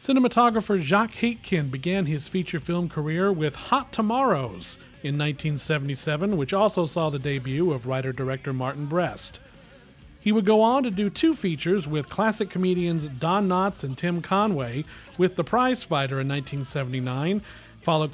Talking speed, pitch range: 150 wpm, 145-200 Hz